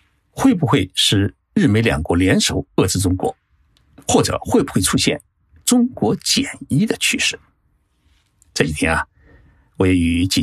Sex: male